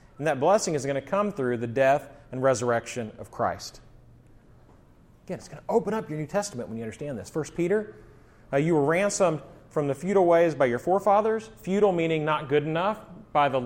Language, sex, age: English, male, 30-49